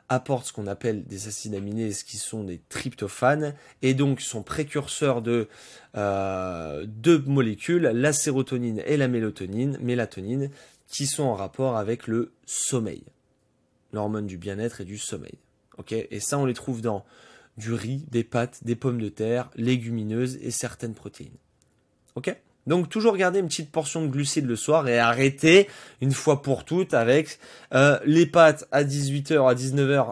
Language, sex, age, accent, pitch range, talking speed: French, male, 20-39, French, 110-140 Hz, 165 wpm